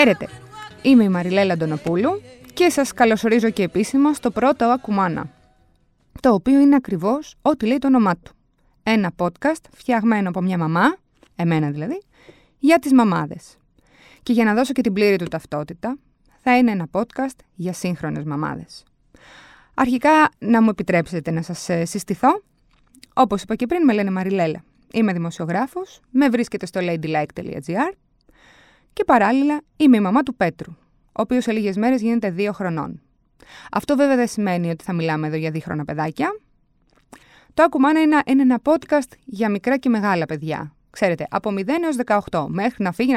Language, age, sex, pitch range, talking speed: Greek, 20-39, female, 180-265 Hz, 160 wpm